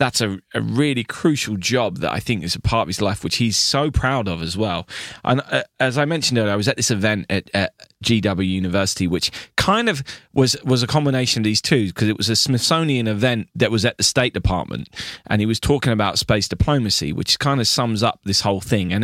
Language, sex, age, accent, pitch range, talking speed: English, male, 20-39, British, 95-125 Hz, 235 wpm